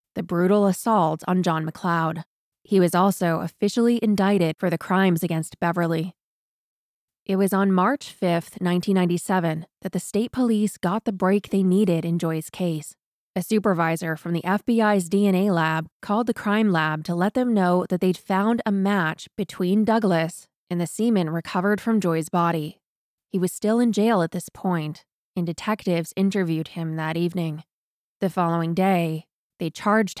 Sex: female